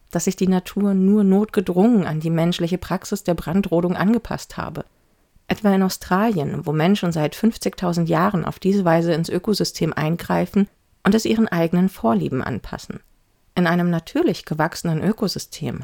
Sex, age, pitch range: female, 40-59, 165-200 Hz